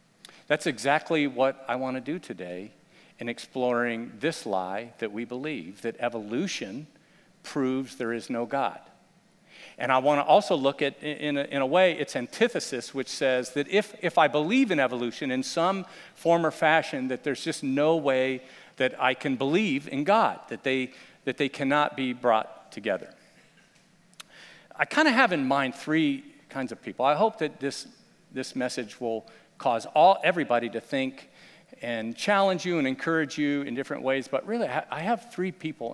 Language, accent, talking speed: English, American, 175 wpm